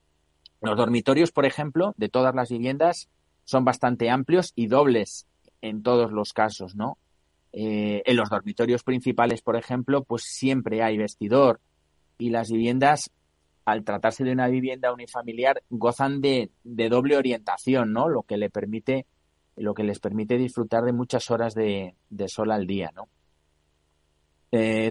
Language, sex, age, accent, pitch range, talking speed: Spanish, male, 30-49, Spanish, 100-130 Hz, 150 wpm